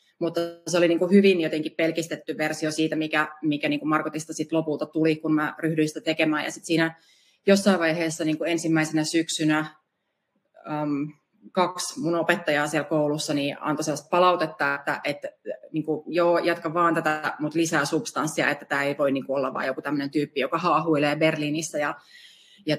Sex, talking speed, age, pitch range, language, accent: female, 175 wpm, 30-49, 150-170 Hz, Finnish, native